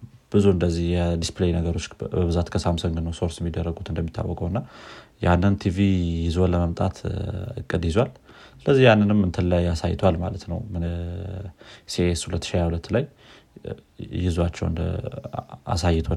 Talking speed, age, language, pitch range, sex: 120 wpm, 30-49, Amharic, 85-100 Hz, male